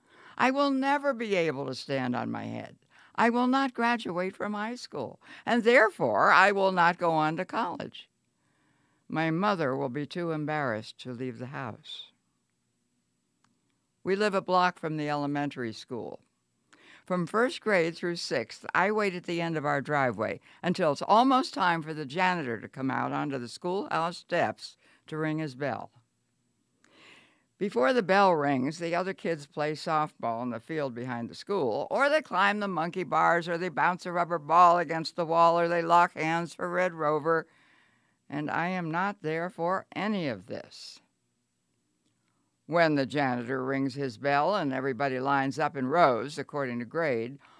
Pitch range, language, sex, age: 135-185 Hz, English, female, 60-79